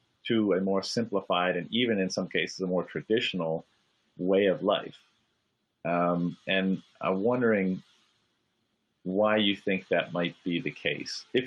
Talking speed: 145 wpm